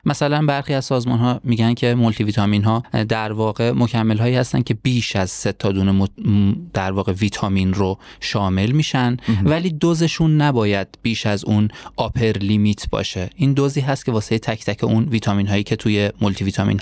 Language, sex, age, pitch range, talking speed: Persian, male, 20-39, 105-130 Hz, 170 wpm